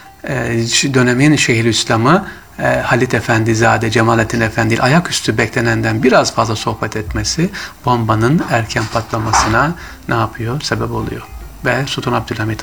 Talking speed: 115 wpm